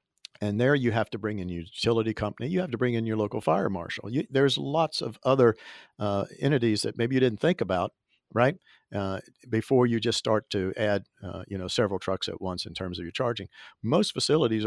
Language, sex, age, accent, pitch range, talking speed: English, male, 50-69, American, 95-115 Hz, 215 wpm